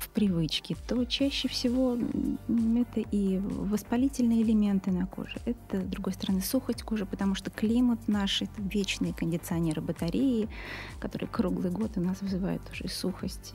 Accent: native